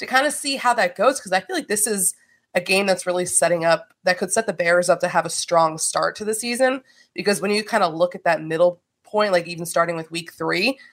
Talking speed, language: 270 wpm, English